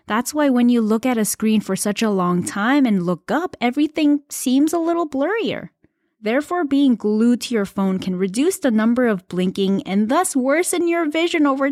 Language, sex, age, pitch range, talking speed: English, female, 20-39, 190-275 Hz, 200 wpm